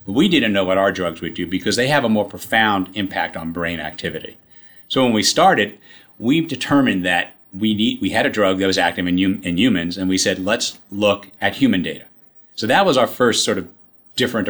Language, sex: English, male